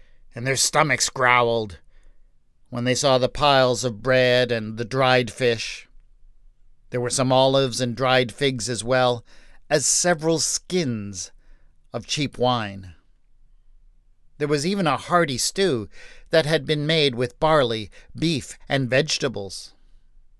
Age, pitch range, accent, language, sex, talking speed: 50-69, 115-160 Hz, American, English, male, 130 wpm